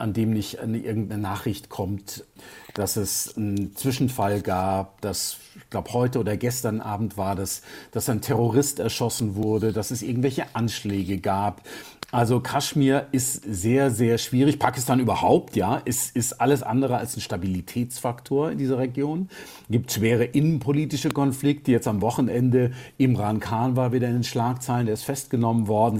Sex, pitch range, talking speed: male, 105-135 Hz, 160 wpm